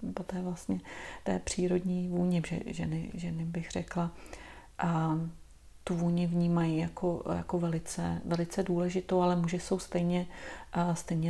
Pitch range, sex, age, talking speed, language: 165-180 Hz, female, 40-59, 140 wpm, Czech